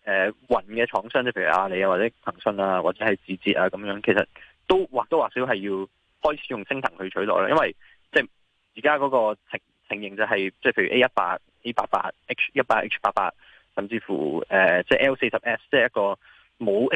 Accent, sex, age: native, male, 20-39